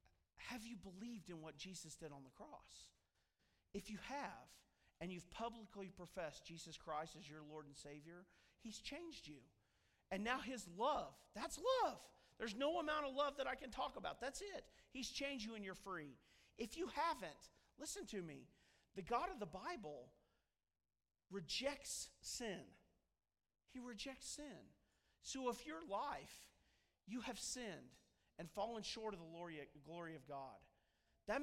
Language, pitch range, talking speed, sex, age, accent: English, 165-255 Hz, 160 wpm, male, 40-59, American